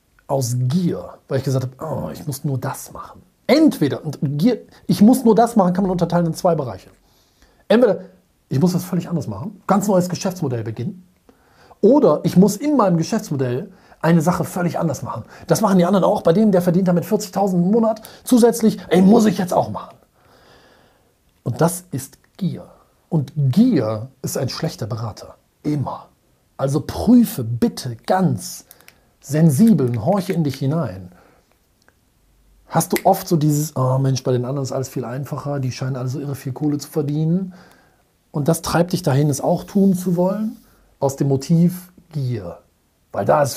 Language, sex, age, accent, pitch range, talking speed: German, male, 40-59, German, 130-180 Hz, 175 wpm